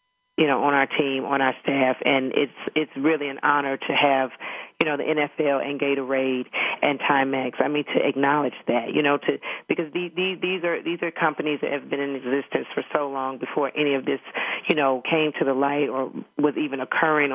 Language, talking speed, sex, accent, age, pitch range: English, 215 wpm, female, American, 40-59, 135-160 Hz